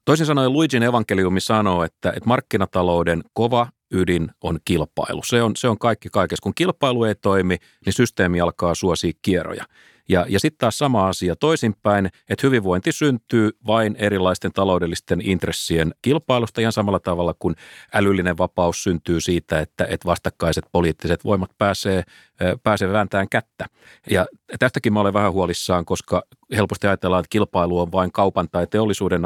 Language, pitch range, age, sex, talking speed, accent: Finnish, 90-110 Hz, 40-59, male, 155 wpm, native